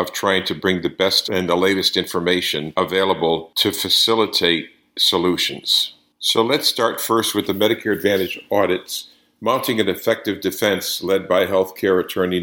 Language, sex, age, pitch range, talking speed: English, male, 50-69, 90-100 Hz, 150 wpm